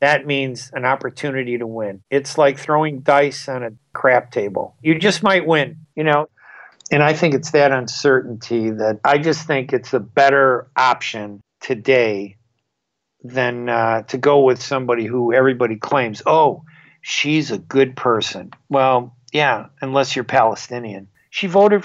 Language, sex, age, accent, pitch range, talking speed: English, male, 50-69, American, 130-165 Hz, 155 wpm